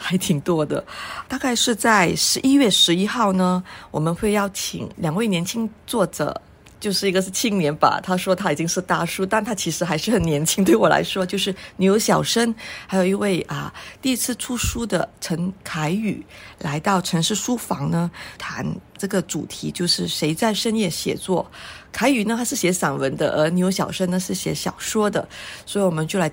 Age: 50-69